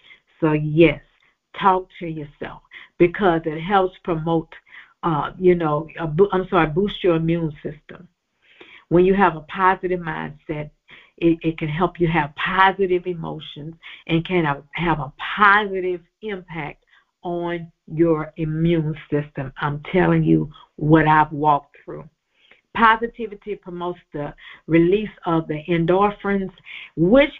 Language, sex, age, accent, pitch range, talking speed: English, female, 50-69, American, 165-210 Hz, 125 wpm